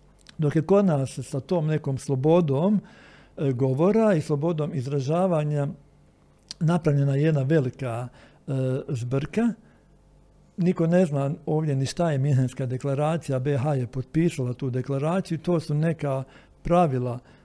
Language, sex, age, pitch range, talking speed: Croatian, male, 60-79, 135-170 Hz, 115 wpm